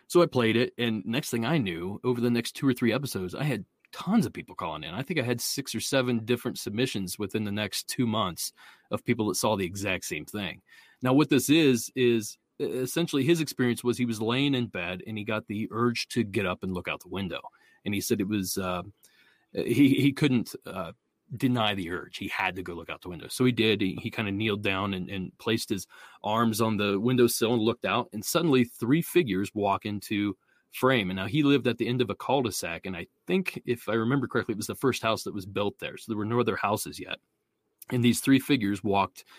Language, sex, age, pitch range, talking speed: English, male, 30-49, 100-130 Hz, 240 wpm